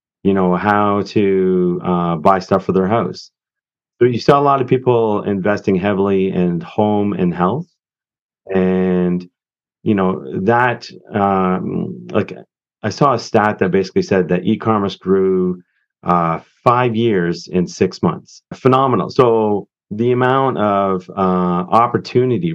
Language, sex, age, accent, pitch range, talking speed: English, male, 30-49, American, 90-105 Hz, 140 wpm